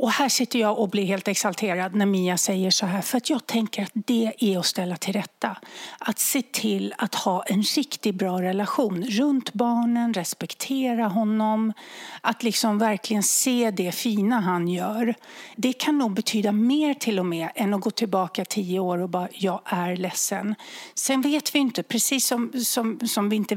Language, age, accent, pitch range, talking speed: English, 60-79, Swedish, 185-235 Hz, 185 wpm